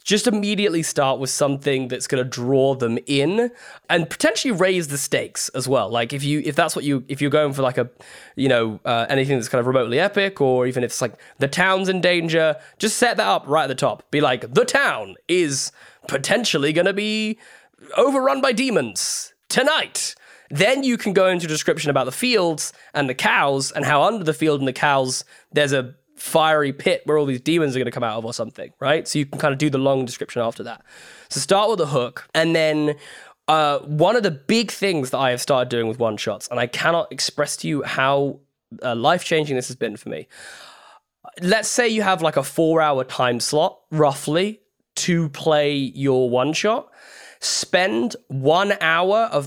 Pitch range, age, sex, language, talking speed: 135-180 Hz, 10-29, male, English, 210 wpm